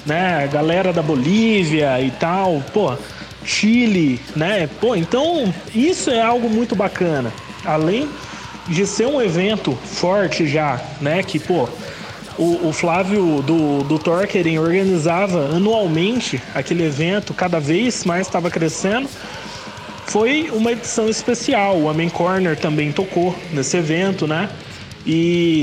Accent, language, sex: Brazilian, Japanese, male